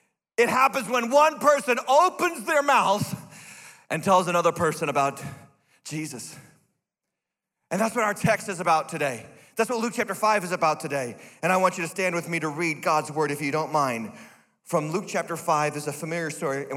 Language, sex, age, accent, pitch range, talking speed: English, male, 40-59, American, 160-230 Hz, 195 wpm